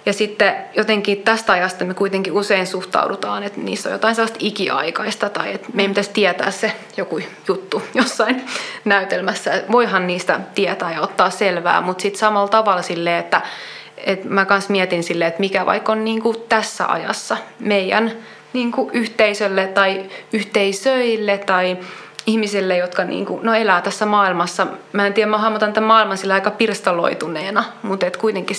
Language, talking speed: Finnish, 145 wpm